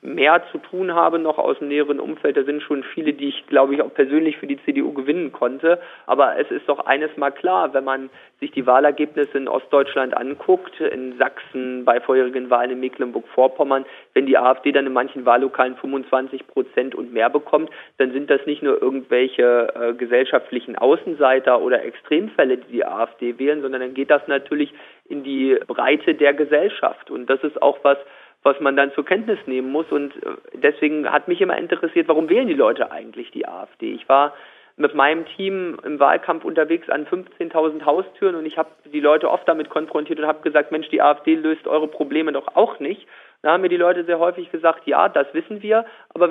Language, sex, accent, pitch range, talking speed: German, male, German, 135-180 Hz, 195 wpm